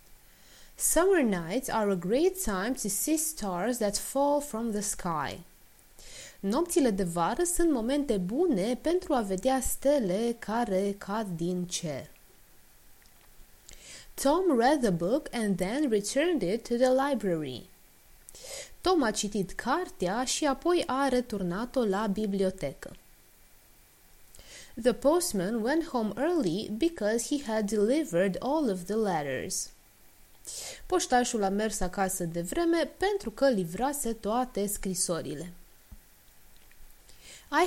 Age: 20-39